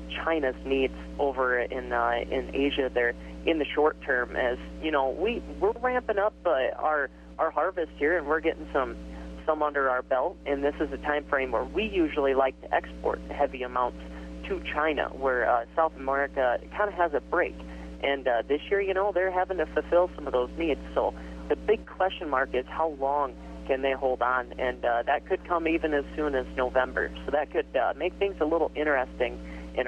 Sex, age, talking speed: male, 40-59, 205 wpm